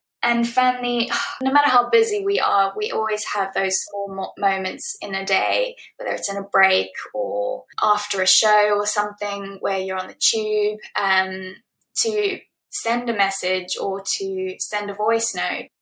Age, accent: 10-29, British